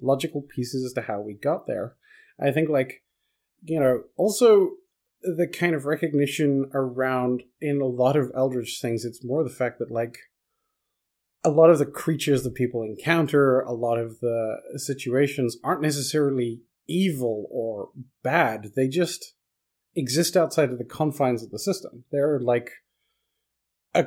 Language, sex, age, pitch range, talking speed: English, male, 30-49, 125-160 Hz, 155 wpm